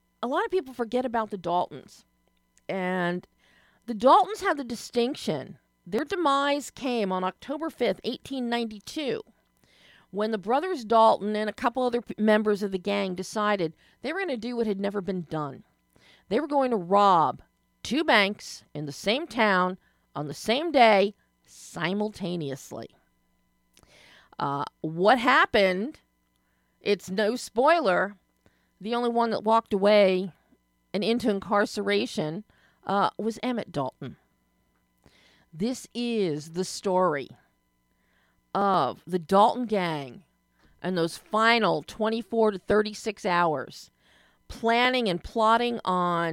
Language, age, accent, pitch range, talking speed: English, 40-59, American, 175-235 Hz, 130 wpm